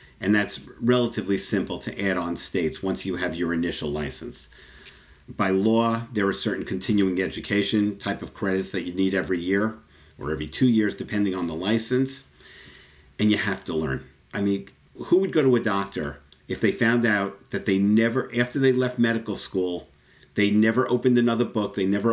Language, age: English, 50-69